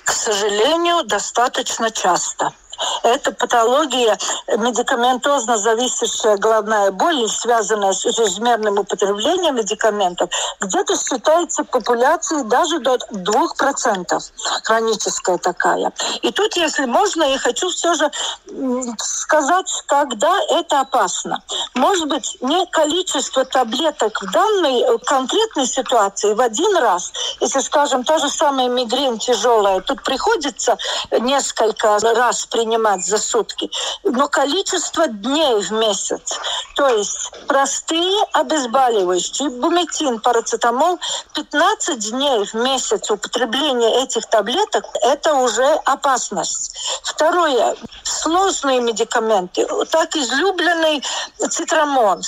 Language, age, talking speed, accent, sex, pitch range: Russian, 50-69, 100 wpm, native, female, 230-320 Hz